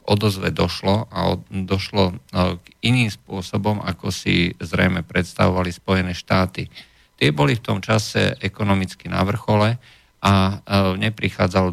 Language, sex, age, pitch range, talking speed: Slovak, male, 50-69, 90-105 Hz, 120 wpm